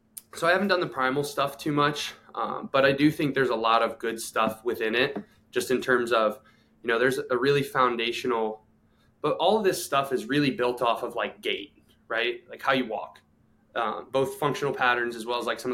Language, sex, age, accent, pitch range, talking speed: English, male, 20-39, American, 115-140 Hz, 225 wpm